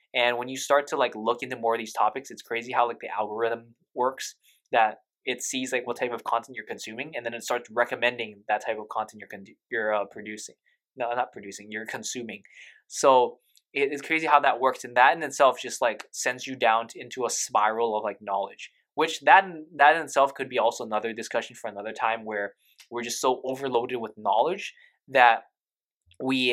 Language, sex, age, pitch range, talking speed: English, male, 20-39, 115-135 Hz, 210 wpm